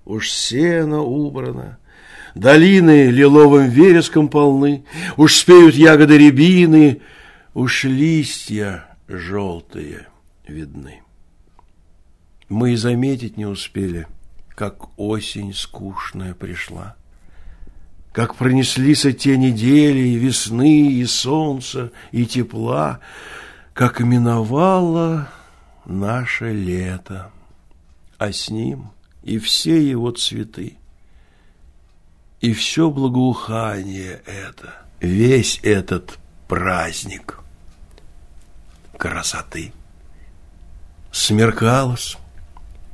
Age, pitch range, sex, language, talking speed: 60-79, 85-130 Hz, male, Russian, 75 wpm